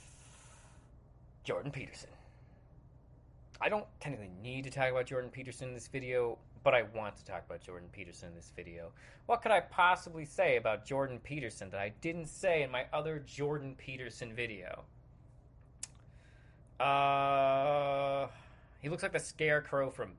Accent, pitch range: American, 120-155 Hz